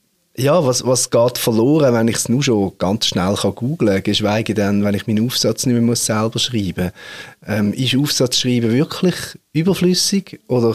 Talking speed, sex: 180 wpm, male